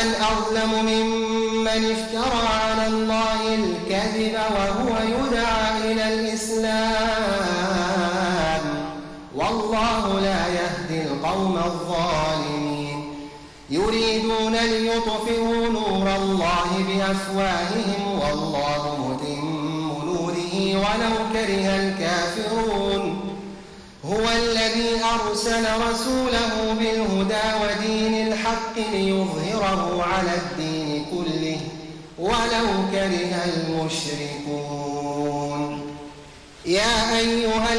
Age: 30-49